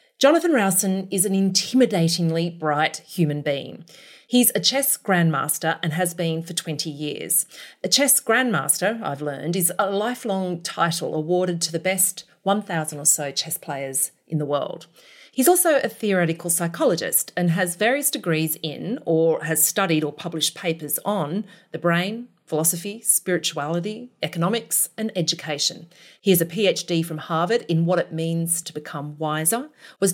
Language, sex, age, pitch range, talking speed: English, female, 40-59, 155-205 Hz, 155 wpm